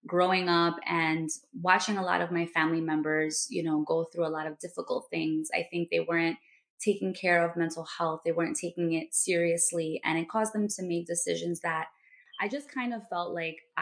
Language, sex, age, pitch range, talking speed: English, female, 20-39, 165-185 Hz, 205 wpm